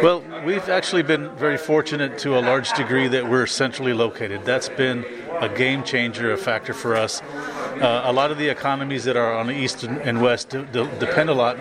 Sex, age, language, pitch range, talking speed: male, 40-59, English, 125-150 Hz, 200 wpm